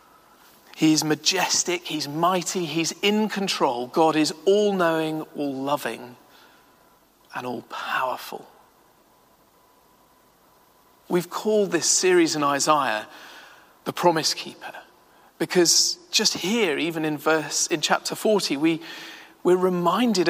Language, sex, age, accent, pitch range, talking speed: English, male, 40-59, British, 150-195 Hz, 100 wpm